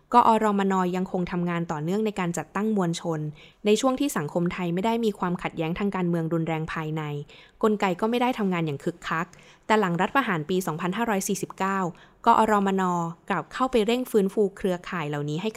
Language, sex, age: Thai, female, 20-39